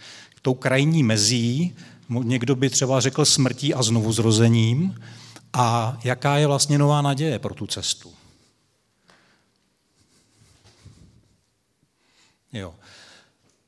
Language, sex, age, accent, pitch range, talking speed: Czech, male, 40-59, native, 120-150 Hz, 90 wpm